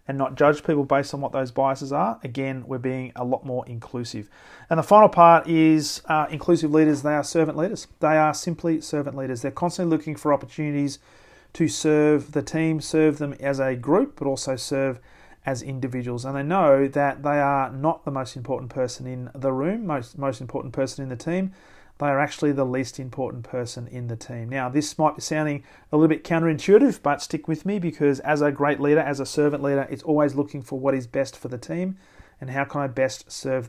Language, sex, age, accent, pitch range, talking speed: English, male, 40-59, Australian, 130-150 Hz, 215 wpm